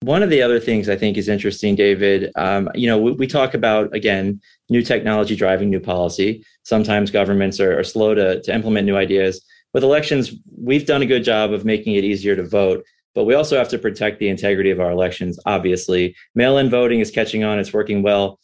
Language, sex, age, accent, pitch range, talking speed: English, male, 30-49, American, 100-115 Hz, 215 wpm